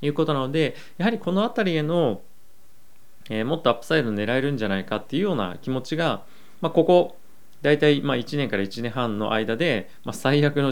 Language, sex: Japanese, male